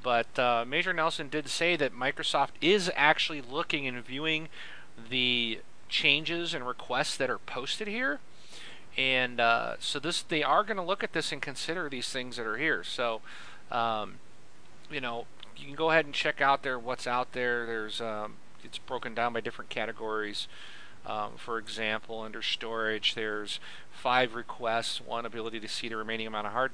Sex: male